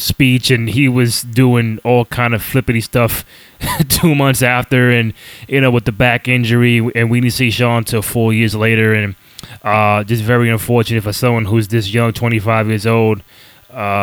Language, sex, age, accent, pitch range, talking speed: English, male, 20-39, American, 110-125 Hz, 185 wpm